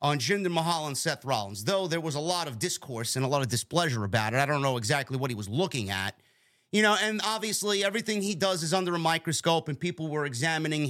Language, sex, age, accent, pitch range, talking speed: English, male, 30-49, American, 145-190 Hz, 240 wpm